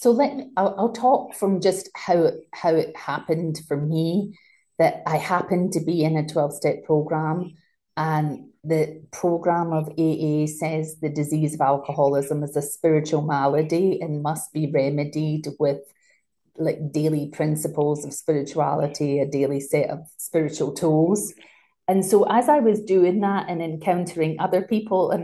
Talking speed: 155 wpm